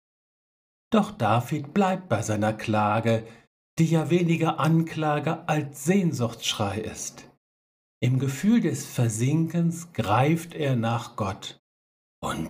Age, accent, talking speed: 60-79, German, 105 wpm